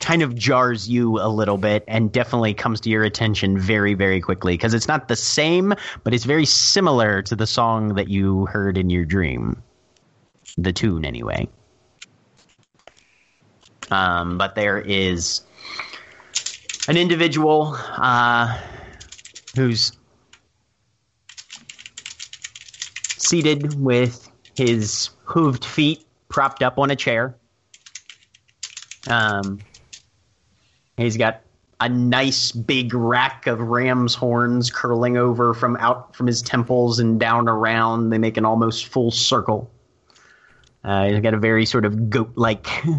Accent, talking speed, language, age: American, 125 wpm, English, 30-49